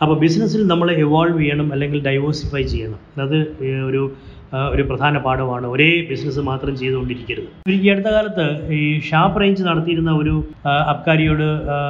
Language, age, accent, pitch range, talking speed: Malayalam, 20-39, native, 140-165 Hz, 125 wpm